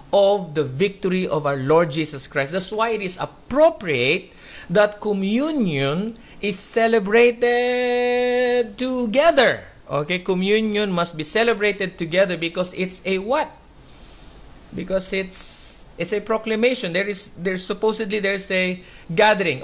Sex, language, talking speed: male, English, 120 wpm